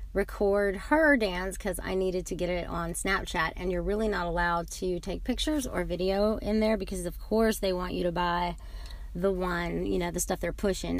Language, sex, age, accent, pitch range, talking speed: English, female, 30-49, American, 165-195 Hz, 215 wpm